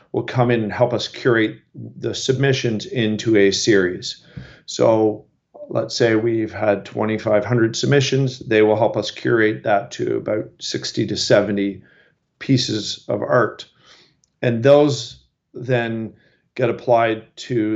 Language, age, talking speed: English, 40-59, 130 wpm